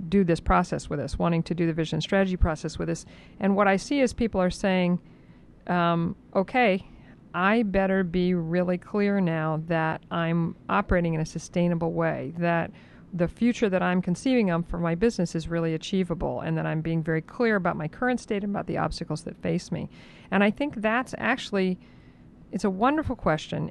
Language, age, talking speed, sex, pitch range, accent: English, 50-69, 190 wpm, female, 165-205 Hz, American